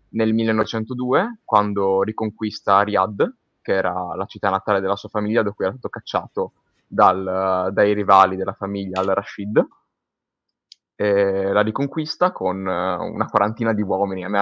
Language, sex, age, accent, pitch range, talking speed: Italian, male, 20-39, native, 95-115 Hz, 135 wpm